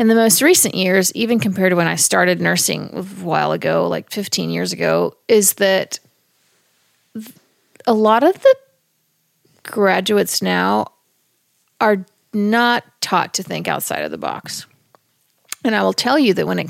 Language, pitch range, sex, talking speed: English, 175-215 Hz, female, 160 wpm